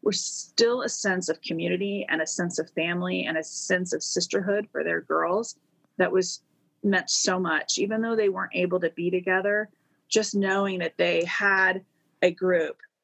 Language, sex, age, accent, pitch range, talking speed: English, female, 30-49, American, 160-195 Hz, 180 wpm